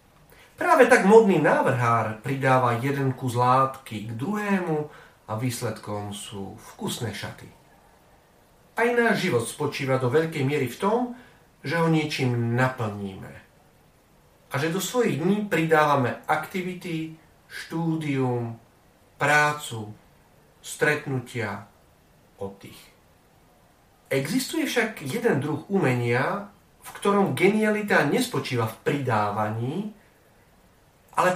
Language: Slovak